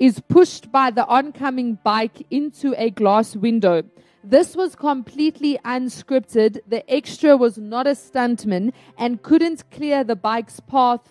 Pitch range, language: 220-270 Hz, English